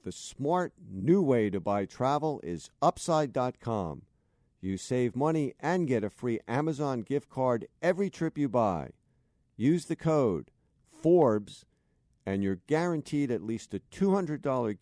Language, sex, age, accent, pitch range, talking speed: English, male, 50-69, American, 100-140 Hz, 140 wpm